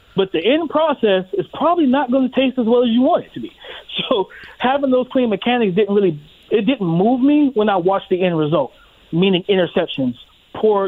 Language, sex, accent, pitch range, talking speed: English, male, American, 160-205 Hz, 215 wpm